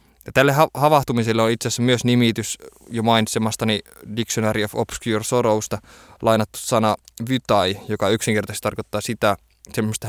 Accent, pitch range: native, 100-115 Hz